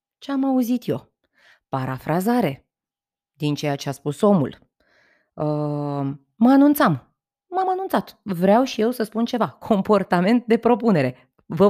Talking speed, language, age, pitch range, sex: 135 wpm, Romanian, 20-39, 155-210 Hz, female